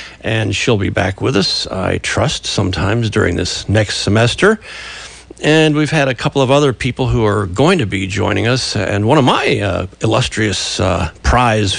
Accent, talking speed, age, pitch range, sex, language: American, 185 wpm, 50-69, 100-135 Hz, male, English